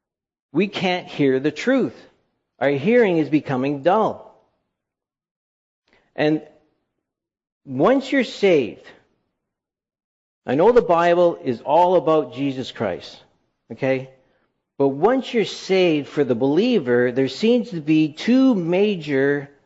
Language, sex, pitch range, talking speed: English, male, 130-180 Hz, 115 wpm